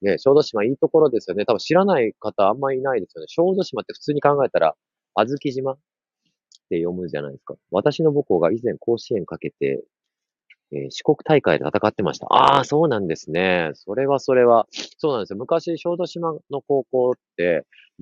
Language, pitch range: Japanese, 105-165 Hz